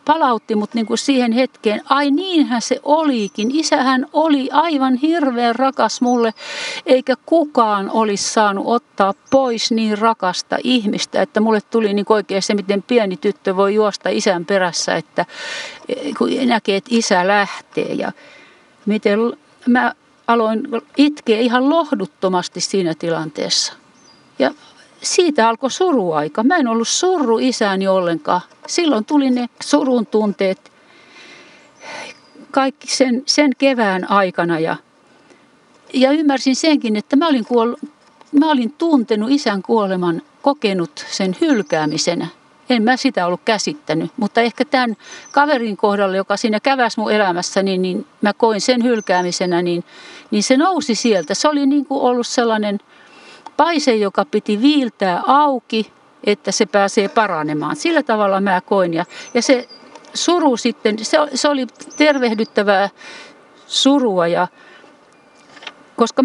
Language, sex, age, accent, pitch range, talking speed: Finnish, female, 50-69, native, 210-295 Hz, 130 wpm